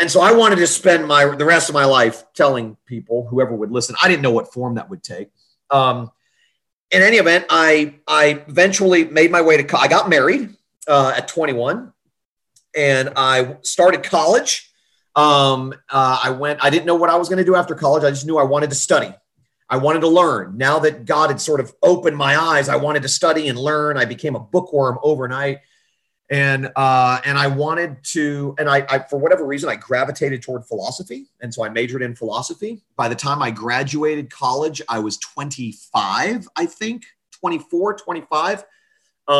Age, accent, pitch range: 40-59, American, 130-165 Hz